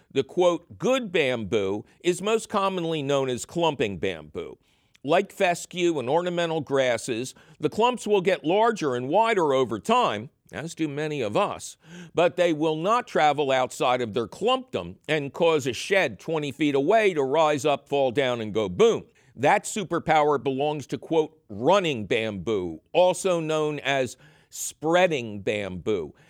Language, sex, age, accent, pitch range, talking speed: English, male, 50-69, American, 140-185 Hz, 150 wpm